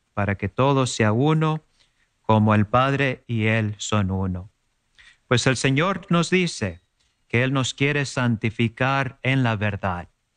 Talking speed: 145 wpm